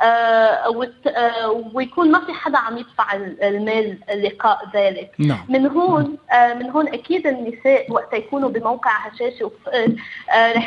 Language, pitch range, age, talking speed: Arabic, 210-265 Hz, 20-39, 120 wpm